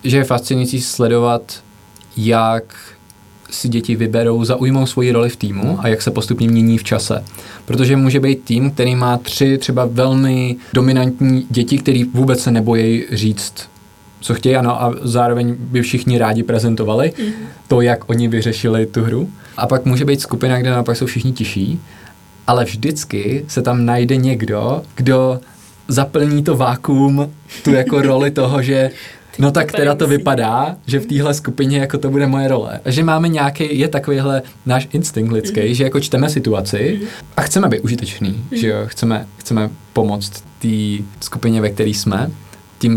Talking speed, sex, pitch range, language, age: 165 wpm, male, 115-135 Hz, Czech, 20-39